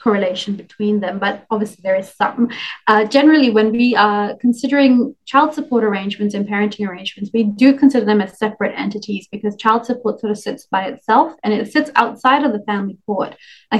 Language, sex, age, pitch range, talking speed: English, female, 20-39, 205-230 Hz, 190 wpm